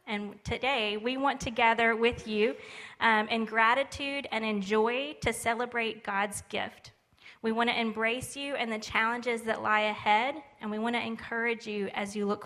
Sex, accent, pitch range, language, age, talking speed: female, American, 215-240 Hz, English, 20-39, 185 wpm